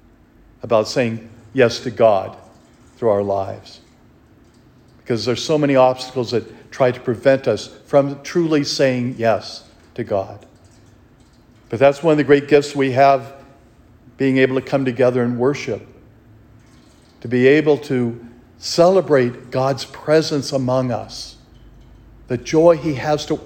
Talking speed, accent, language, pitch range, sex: 140 wpm, American, English, 105-135 Hz, male